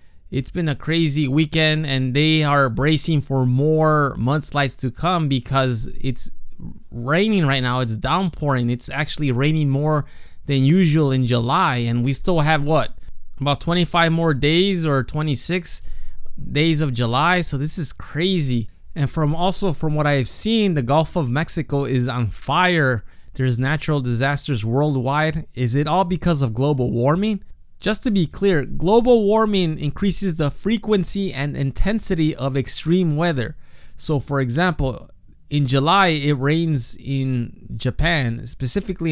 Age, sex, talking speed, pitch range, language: 20-39, male, 145 wpm, 130-165 Hz, English